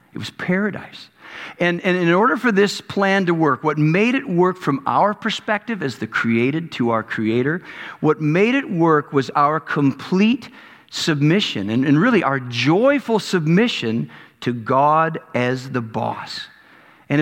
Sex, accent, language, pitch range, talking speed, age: male, American, English, 150-210 Hz, 155 wpm, 50-69